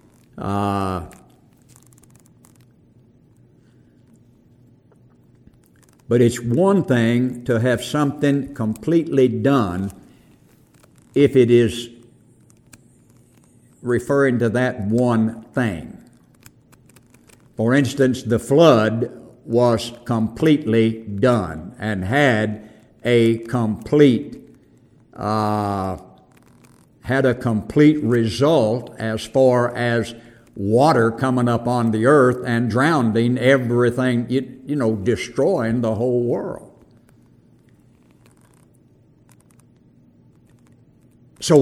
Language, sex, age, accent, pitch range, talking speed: English, male, 60-79, American, 110-130 Hz, 80 wpm